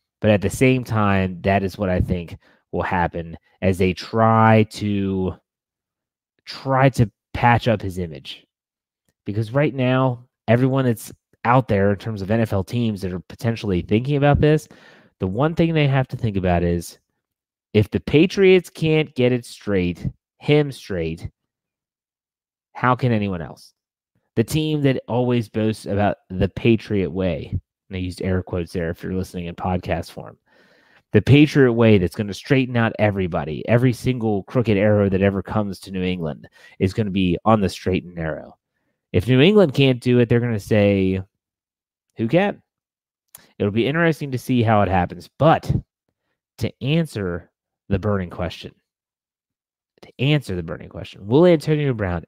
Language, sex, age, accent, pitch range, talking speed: English, male, 30-49, American, 95-125 Hz, 165 wpm